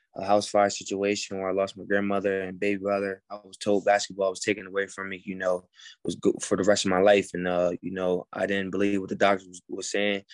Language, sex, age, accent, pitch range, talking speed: English, male, 20-39, American, 100-115 Hz, 255 wpm